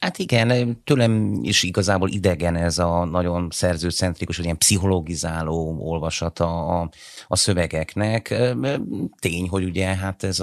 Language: Hungarian